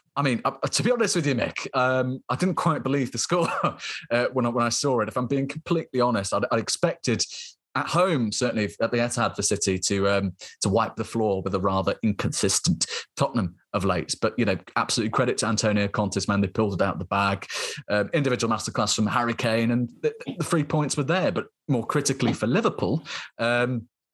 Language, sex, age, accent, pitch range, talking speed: English, male, 30-49, British, 100-140 Hz, 210 wpm